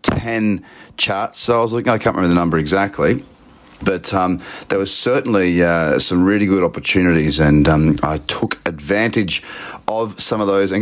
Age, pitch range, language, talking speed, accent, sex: 30-49, 85-105 Hz, English, 175 wpm, Australian, male